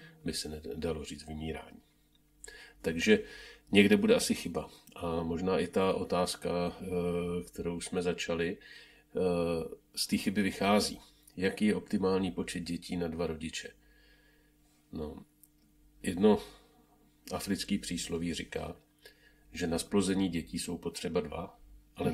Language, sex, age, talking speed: Czech, male, 40-59, 115 wpm